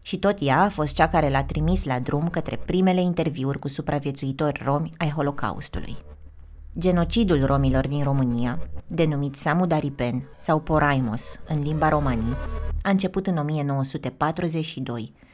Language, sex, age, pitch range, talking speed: Romanian, female, 20-39, 130-170 Hz, 135 wpm